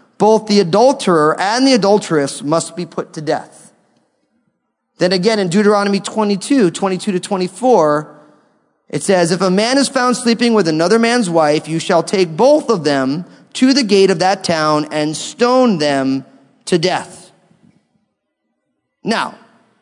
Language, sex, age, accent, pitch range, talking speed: English, male, 30-49, American, 170-230 Hz, 150 wpm